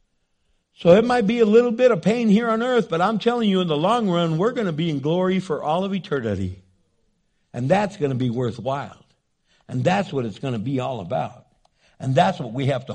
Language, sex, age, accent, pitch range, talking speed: English, male, 60-79, American, 175-230 Hz, 235 wpm